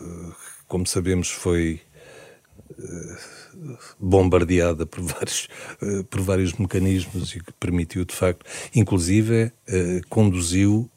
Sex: male